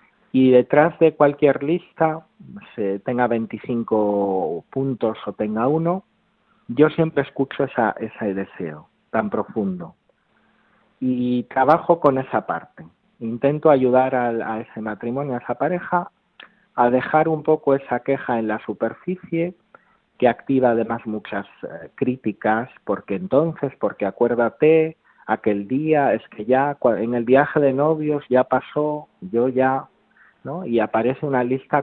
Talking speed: 130 wpm